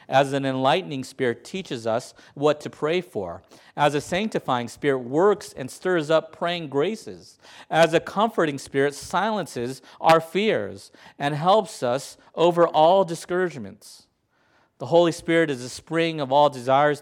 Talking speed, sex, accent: 150 wpm, male, American